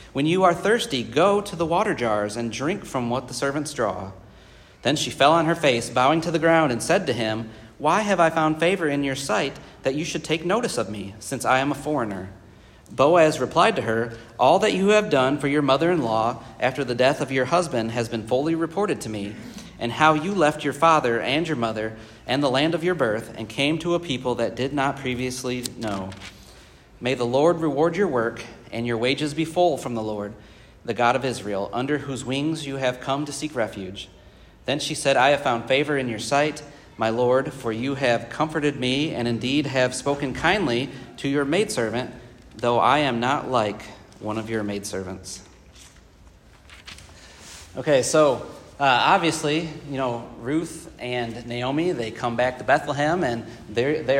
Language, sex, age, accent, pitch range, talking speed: English, male, 40-59, American, 110-150 Hz, 195 wpm